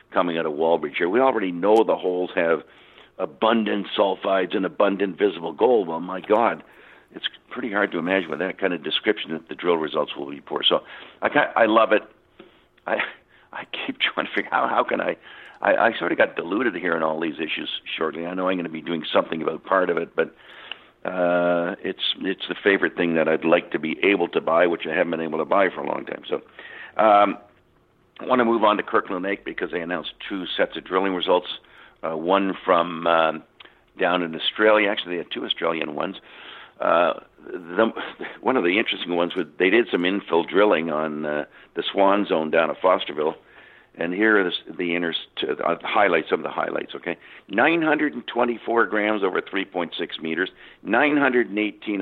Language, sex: English, male